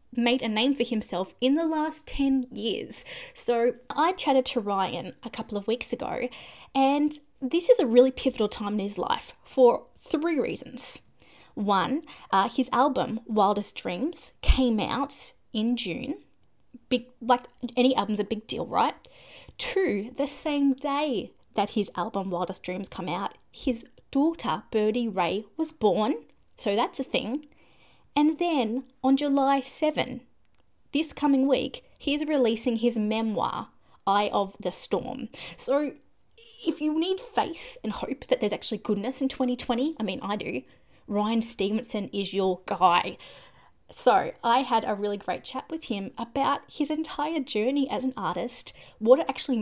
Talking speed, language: 155 wpm, English